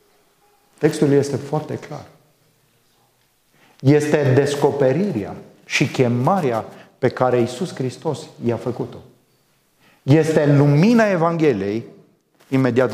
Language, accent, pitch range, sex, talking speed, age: English, Romanian, 130-170 Hz, male, 90 wpm, 30-49